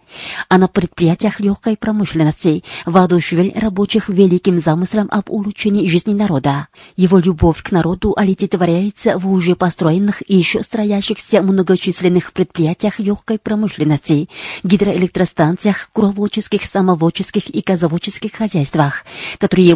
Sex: female